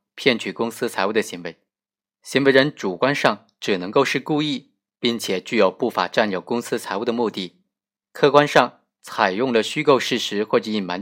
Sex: male